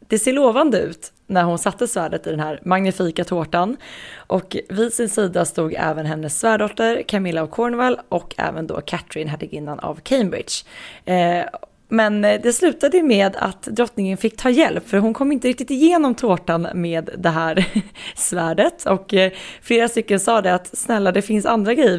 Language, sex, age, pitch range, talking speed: Swedish, female, 20-39, 170-240 Hz, 175 wpm